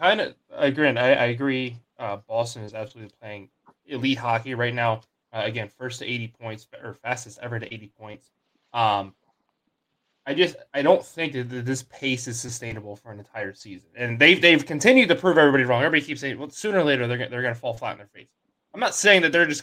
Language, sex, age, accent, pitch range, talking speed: English, male, 20-39, American, 115-135 Hz, 225 wpm